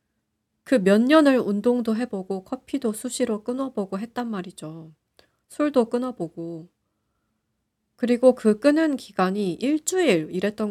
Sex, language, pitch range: female, Korean, 165-250 Hz